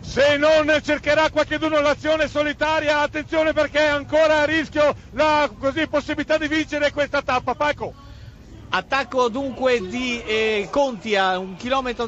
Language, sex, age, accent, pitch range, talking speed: Italian, male, 40-59, native, 240-280 Hz, 140 wpm